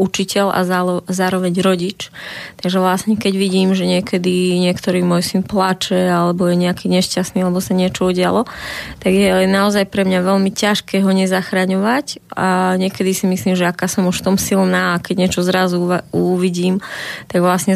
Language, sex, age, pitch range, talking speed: Slovak, female, 20-39, 180-190 Hz, 165 wpm